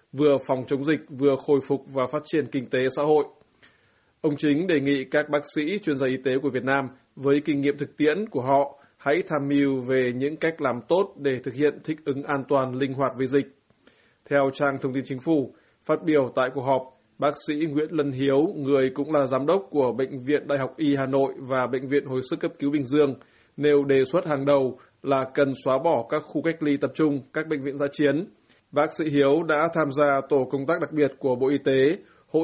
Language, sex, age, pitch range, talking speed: Vietnamese, male, 20-39, 135-150 Hz, 235 wpm